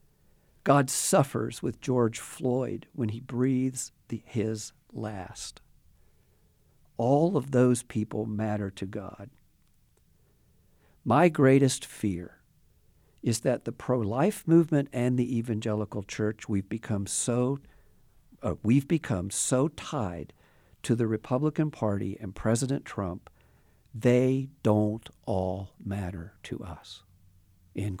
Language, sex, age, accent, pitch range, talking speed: English, male, 50-69, American, 105-135 Hz, 110 wpm